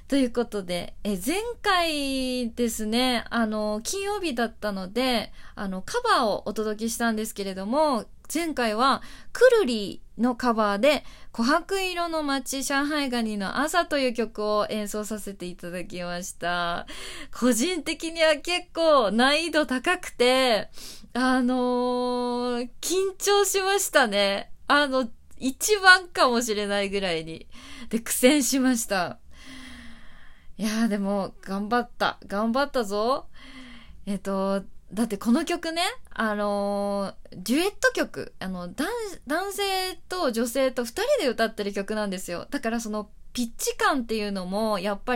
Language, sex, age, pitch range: Japanese, female, 20-39, 205-275 Hz